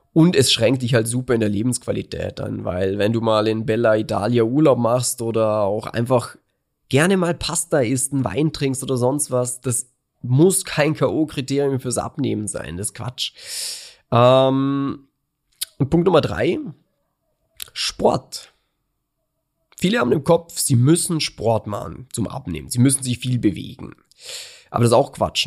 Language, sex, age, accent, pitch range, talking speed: German, male, 20-39, German, 115-145 Hz, 160 wpm